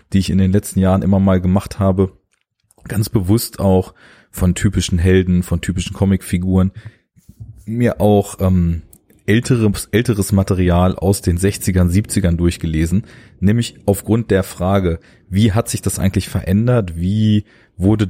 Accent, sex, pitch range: German, male, 95-105 Hz